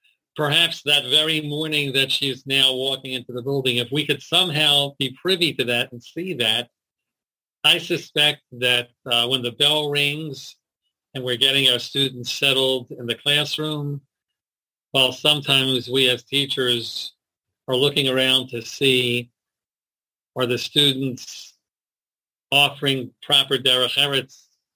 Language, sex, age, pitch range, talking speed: English, male, 40-59, 120-145 Hz, 135 wpm